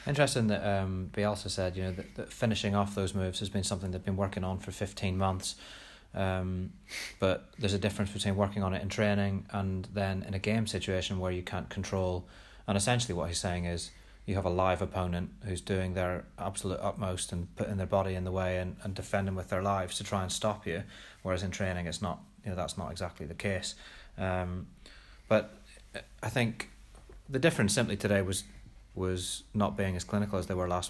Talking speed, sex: 210 wpm, male